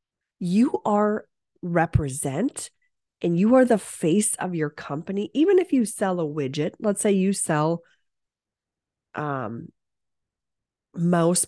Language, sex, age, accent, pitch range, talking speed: English, female, 30-49, American, 160-235 Hz, 120 wpm